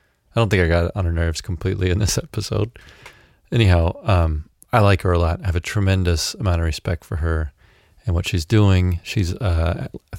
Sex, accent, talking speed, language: male, American, 200 wpm, English